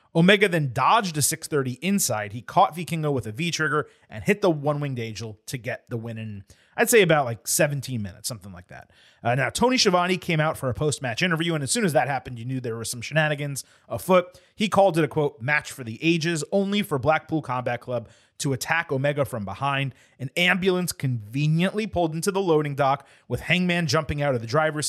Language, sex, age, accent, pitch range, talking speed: English, male, 30-49, American, 125-170 Hz, 210 wpm